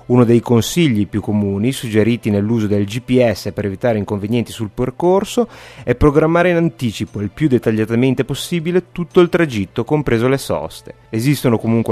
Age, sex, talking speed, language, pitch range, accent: 30-49, male, 150 wpm, Italian, 105-130 Hz, native